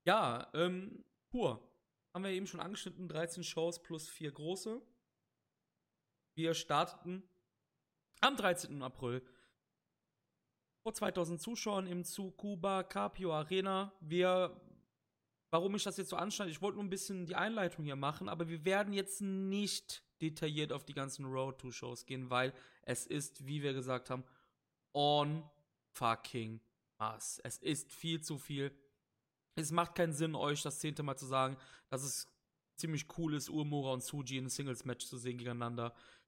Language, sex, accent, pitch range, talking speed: German, male, German, 130-185 Hz, 155 wpm